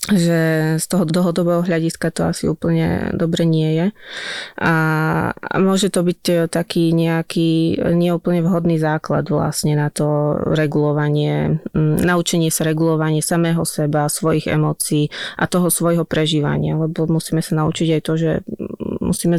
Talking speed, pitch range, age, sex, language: 135 wpm, 160-175 Hz, 20-39, female, Slovak